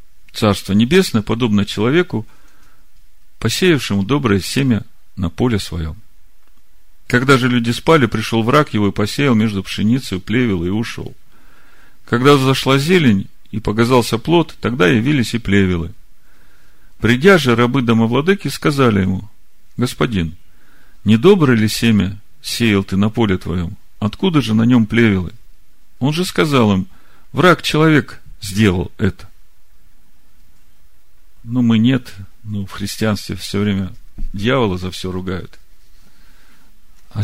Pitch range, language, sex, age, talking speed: 95-125 Hz, Russian, male, 40-59, 120 wpm